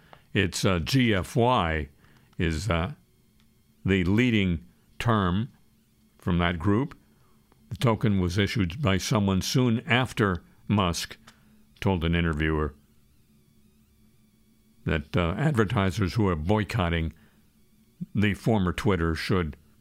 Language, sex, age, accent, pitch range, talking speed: English, male, 60-79, American, 90-120 Hz, 100 wpm